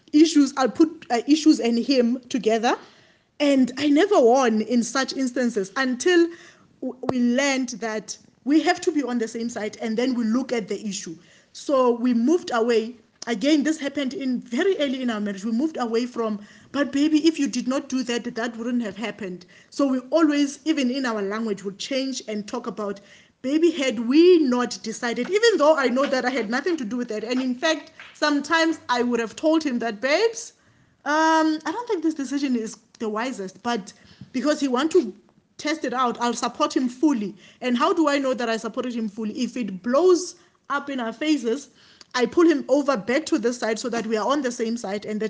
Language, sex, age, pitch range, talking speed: English, female, 20-39, 230-290 Hz, 210 wpm